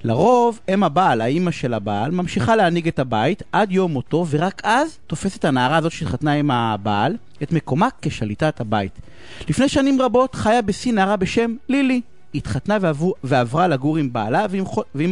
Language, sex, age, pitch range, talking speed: Hebrew, male, 30-49, 135-200 Hz, 165 wpm